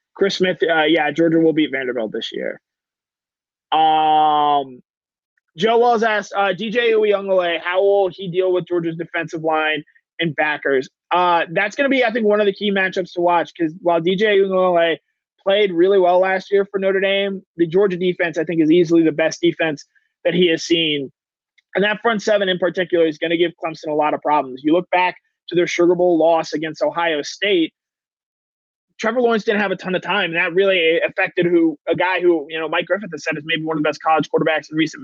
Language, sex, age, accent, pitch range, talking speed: English, male, 20-39, American, 160-200 Hz, 215 wpm